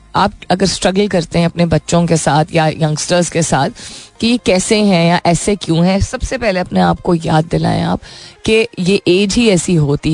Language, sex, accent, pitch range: Hindi, female, native, 165-210 Hz